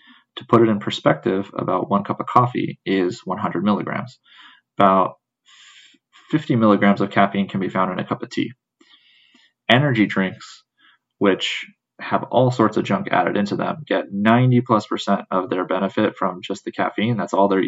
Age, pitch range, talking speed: 20-39, 95-115 Hz, 175 wpm